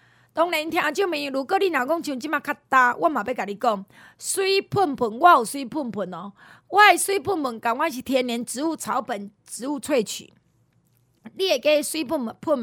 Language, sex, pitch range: Chinese, female, 230-345 Hz